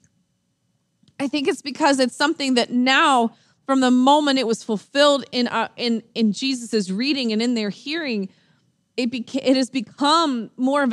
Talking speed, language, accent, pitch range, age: 170 wpm, English, American, 215-270 Hz, 20-39